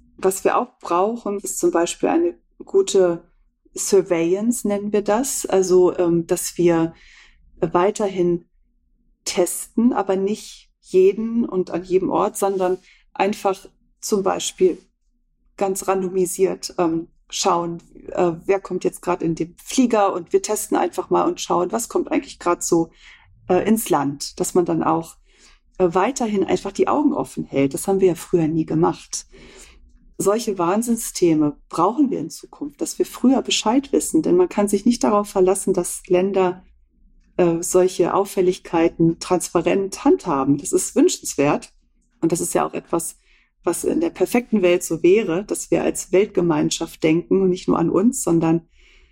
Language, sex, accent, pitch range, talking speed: German, female, German, 170-215 Hz, 150 wpm